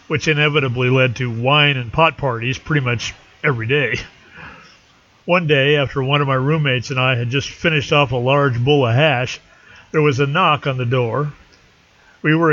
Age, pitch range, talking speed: 40-59, 125-155 Hz, 185 wpm